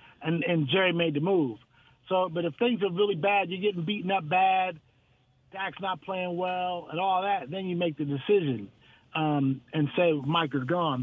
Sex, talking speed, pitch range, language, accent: male, 195 wpm, 155-200 Hz, English, American